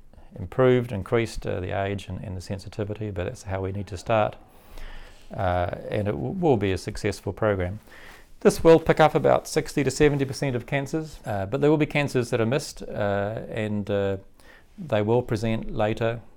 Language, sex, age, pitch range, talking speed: English, male, 40-59, 95-115 Hz, 185 wpm